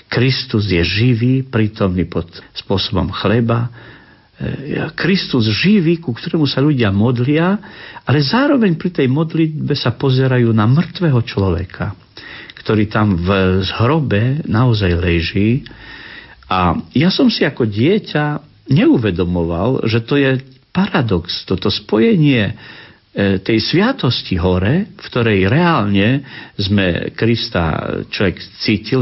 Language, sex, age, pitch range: Slovak, male, 50-69, 95-140 Hz